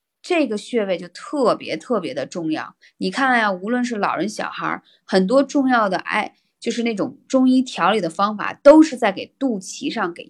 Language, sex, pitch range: Chinese, female, 205-275 Hz